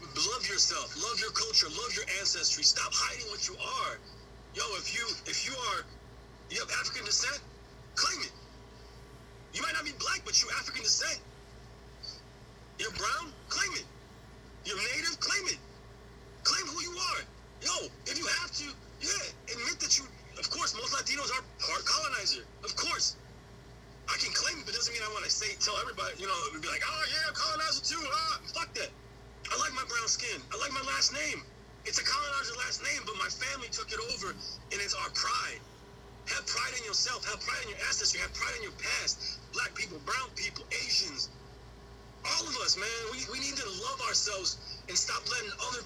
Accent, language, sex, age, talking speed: American, English, male, 30-49, 190 wpm